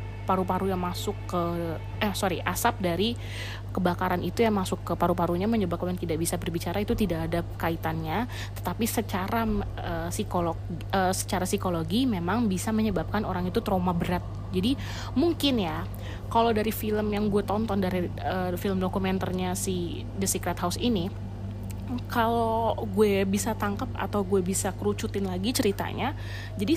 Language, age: Indonesian, 20-39